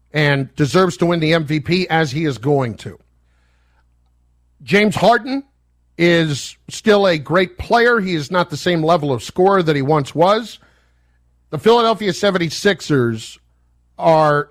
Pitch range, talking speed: 130-185 Hz, 140 wpm